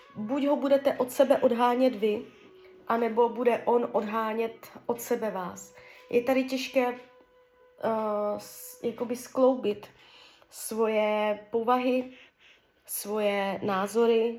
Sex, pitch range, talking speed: female, 210-255 Hz, 90 wpm